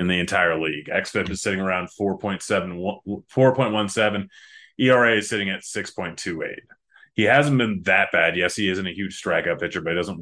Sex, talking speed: male, 175 wpm